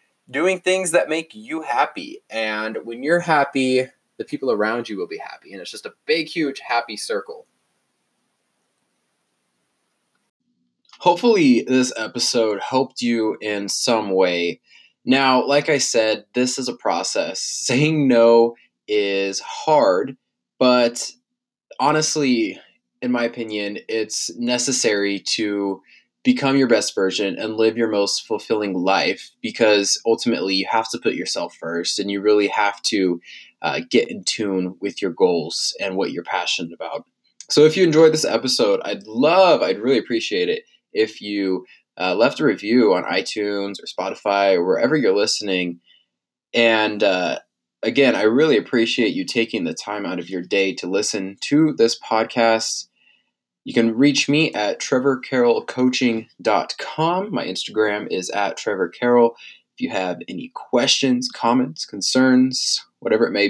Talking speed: 145 wpm